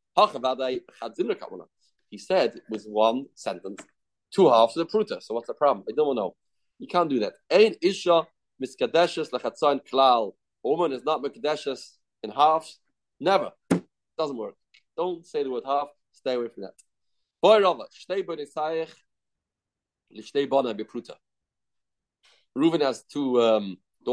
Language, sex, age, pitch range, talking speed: English, male, 30-49, 120-160 Hz, 110 wpm